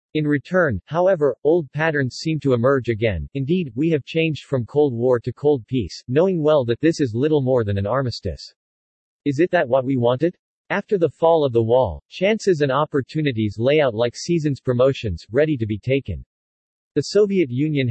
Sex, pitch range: male, 120-155 Hz